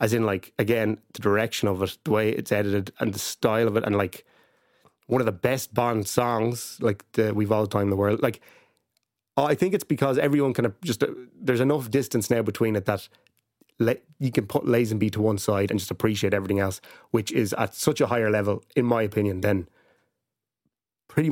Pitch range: 100-125 Hz